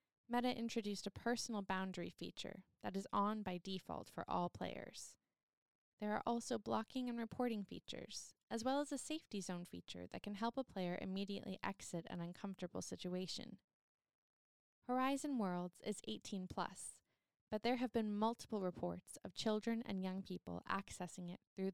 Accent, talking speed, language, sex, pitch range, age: American, 155 wpm, English, female, 185-235 Hz, 20-39